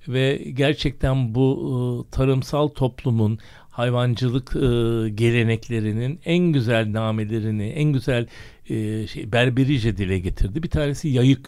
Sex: male